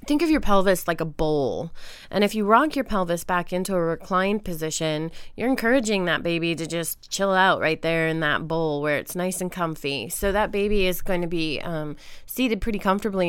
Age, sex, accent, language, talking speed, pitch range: 30-49, female, American, English, 210 wpm, 165-205 Hz